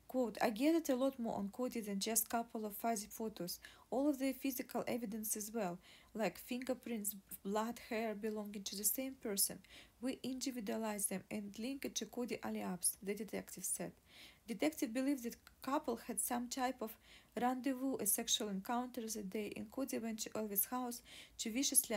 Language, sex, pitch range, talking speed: English, female, 215-250 Hz, 180 wpm